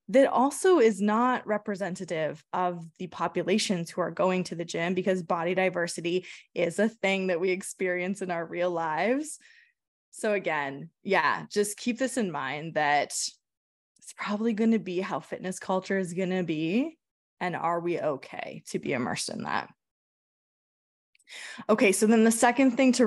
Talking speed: 160 wpm